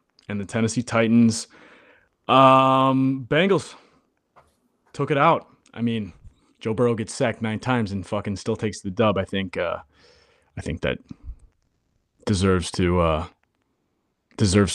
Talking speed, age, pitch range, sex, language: 135 wpm, 30-49, 95-115 Hz, male, English